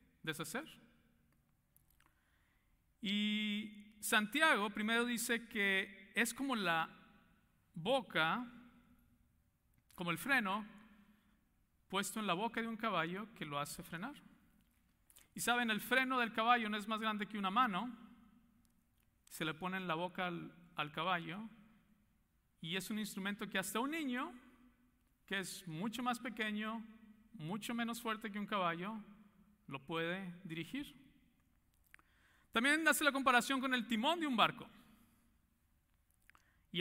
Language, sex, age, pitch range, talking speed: English, male, 50-69, 185-235 Hz, 130 wpm